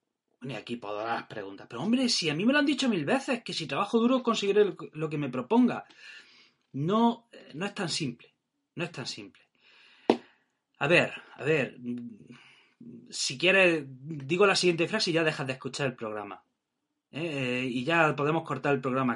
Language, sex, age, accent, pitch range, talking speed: Spanish, male, 30-49, Spanish, 130-200 Hz, 190 wpm